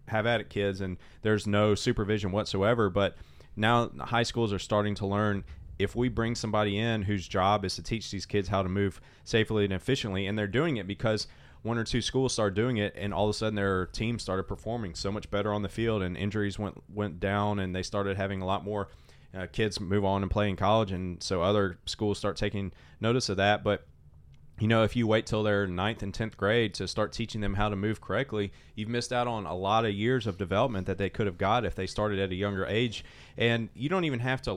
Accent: American